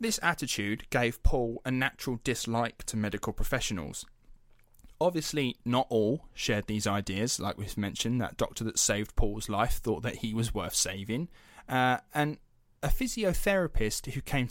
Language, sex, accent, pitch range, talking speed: English, male, British, 110-140 Hz, 155 wpm